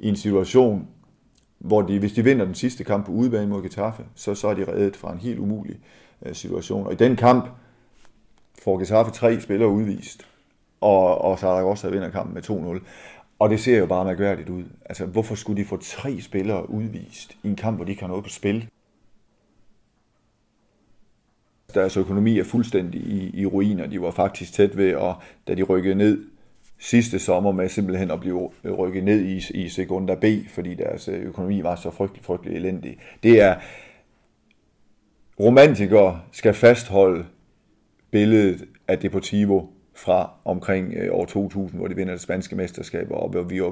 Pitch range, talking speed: 95-110 Hz, 175 wpm